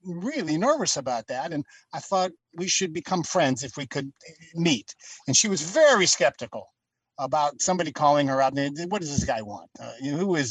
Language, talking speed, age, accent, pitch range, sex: English, 190 wpm, 50-69, American, 145-195 Hz, male